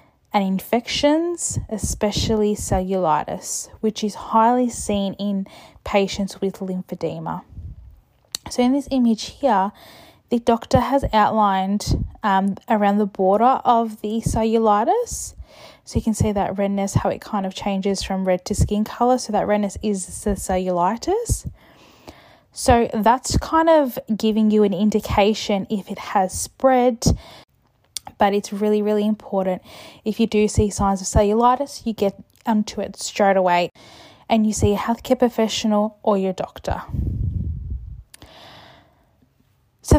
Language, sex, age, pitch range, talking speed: Dutch, female, 10-29, 200-245 Hz, 135 wpm